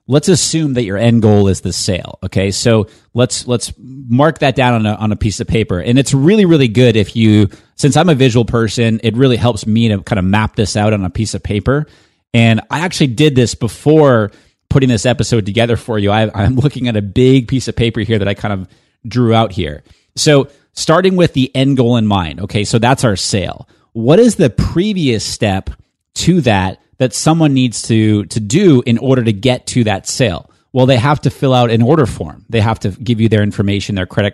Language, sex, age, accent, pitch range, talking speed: English, male, 30-49, American, 105-130 Hz, 225 wpm